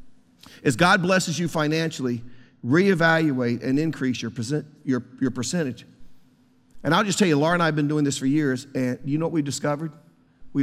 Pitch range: 130-170 Hz